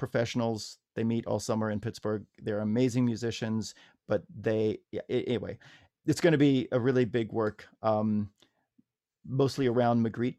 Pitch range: 105-125 Hz